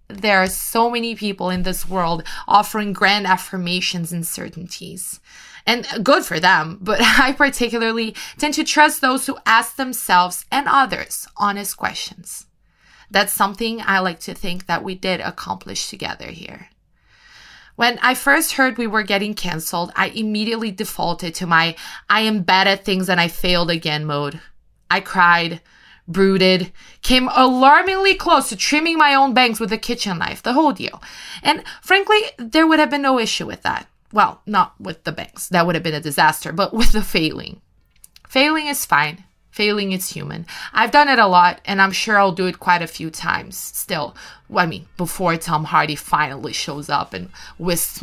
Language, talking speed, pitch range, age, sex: English, 175 wpm, 175-245 Hz, 20-39, female